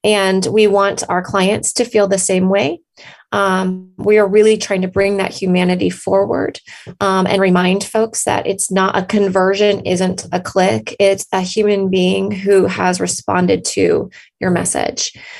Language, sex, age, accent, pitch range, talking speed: English, female, 20-39, American, 180-215 Hz, 165 wpm